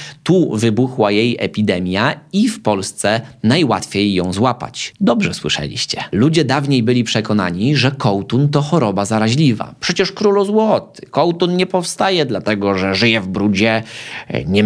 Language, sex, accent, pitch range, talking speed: Polish, male, native, 100-130 Hz, 135 wpm